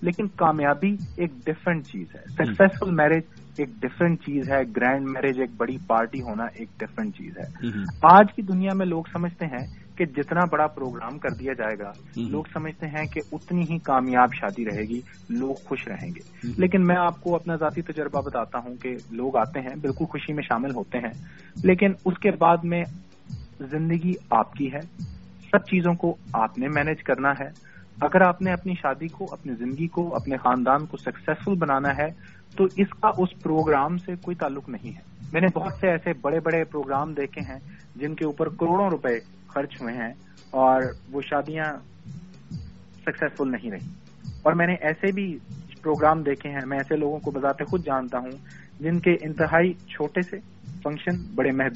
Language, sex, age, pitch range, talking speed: English, male, 30-49, 135-175 Hz, 155 wpm